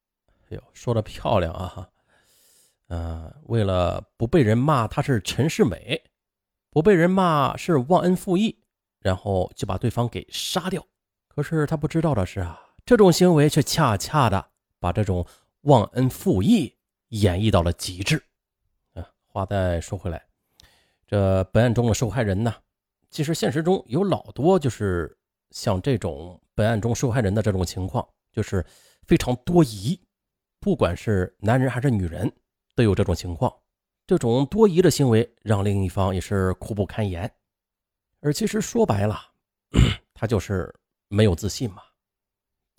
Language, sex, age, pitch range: Chinese, male, 30-49, 95-145 Hz